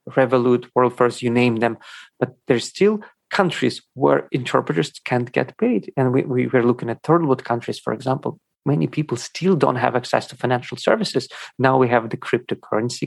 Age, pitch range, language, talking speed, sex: 40-59, 125-145 Hz, English, 185 wpm, male